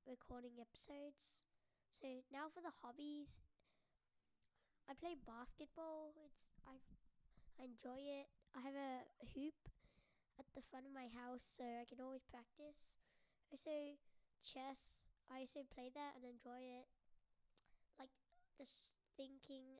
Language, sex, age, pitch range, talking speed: English, female, 10-29, 250-285 Hz, 125 wpm